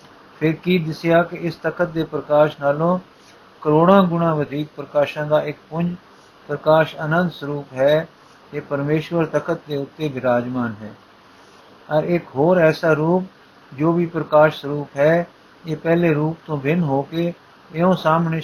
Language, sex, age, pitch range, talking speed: Punjabi, male, 50-69, 145-165 Hz, 145 wpm